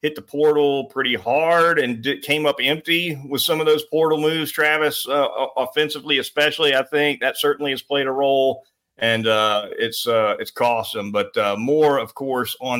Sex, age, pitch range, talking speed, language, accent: male, 40-59, 130-150 Hz, 190 wpm, English, American